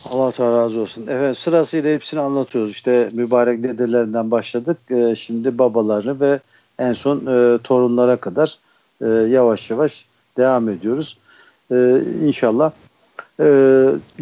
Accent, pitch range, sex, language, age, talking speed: native, 115-140 Hz, male, Turkish, 60-79, 120 wpm